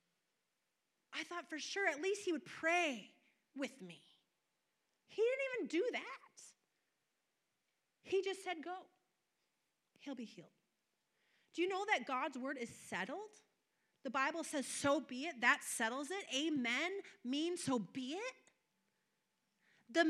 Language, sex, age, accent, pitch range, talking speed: English, female, 30-49, American, 250-360 Hz, 135 wpm